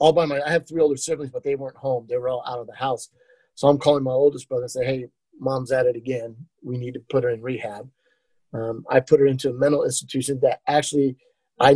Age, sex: 30-49, male